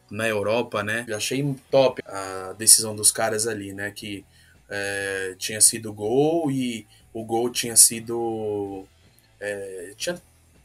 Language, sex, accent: Portuguese, male, Brazilian